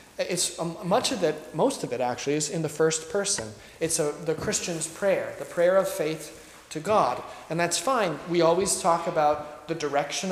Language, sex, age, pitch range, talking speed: English, male, 30-49, 140-175 Hz, 185 wpm